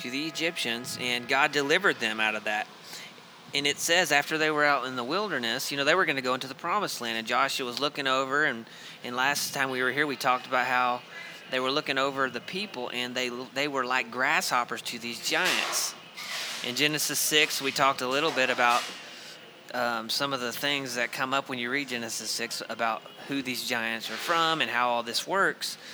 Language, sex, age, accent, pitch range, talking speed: English, male, 30-49, American, 125-155 Hz, 220 wpm